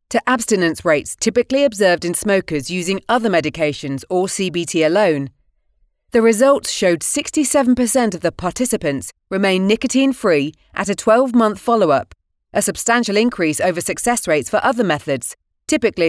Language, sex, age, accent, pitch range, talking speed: English, female, 30-49, British, 165-240 Hz, 135 wpm